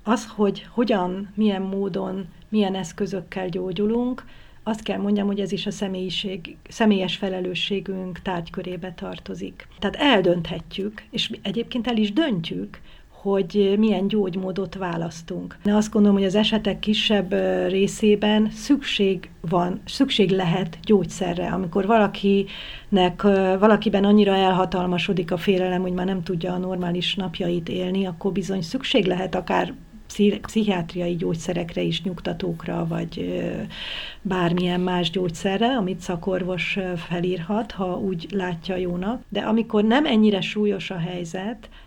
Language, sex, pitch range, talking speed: Hungarian, female, 180-210 Hz, 125 wpm